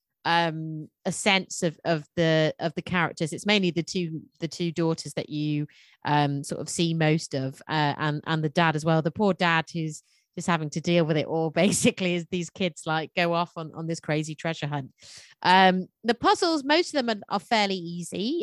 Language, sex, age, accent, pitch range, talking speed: English, female, 30-49, British, 155-185 Hz, 210 wpm